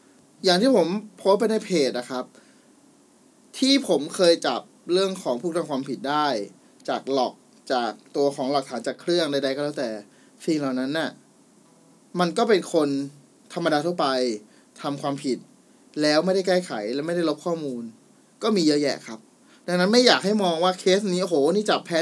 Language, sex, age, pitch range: Thai, male, 20-39, 140-185 Hz